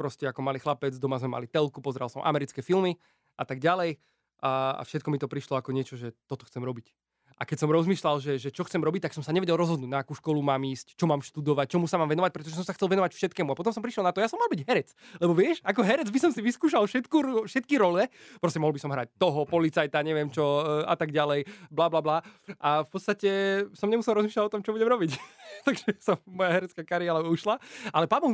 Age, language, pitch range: 20-39, Slovak, 145-185 Hz